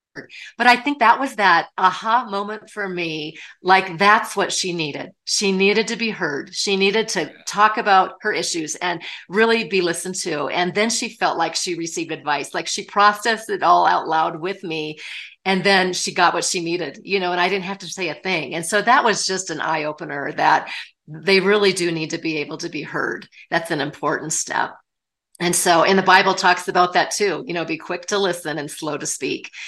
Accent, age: American, 40-59